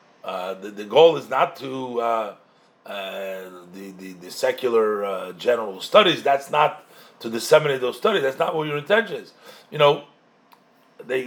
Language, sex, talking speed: English, male, 160 wpm